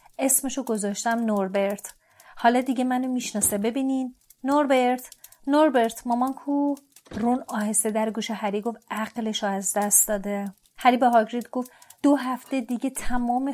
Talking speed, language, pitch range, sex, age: 130 wpm, Persian, 220-280 Hz, female, 30-49